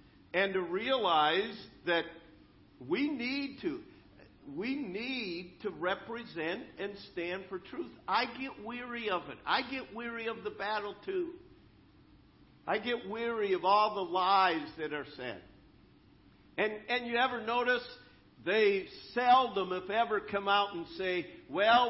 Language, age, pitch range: English, 50-69, 180-270 Hz